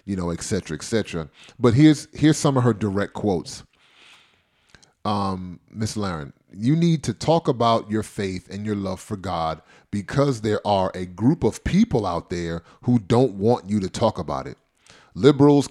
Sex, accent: male, American